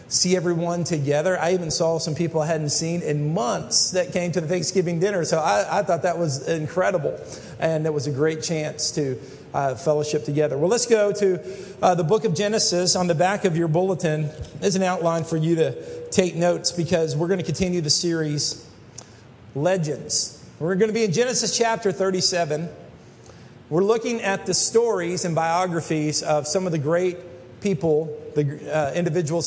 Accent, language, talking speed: American, English, 185 wpm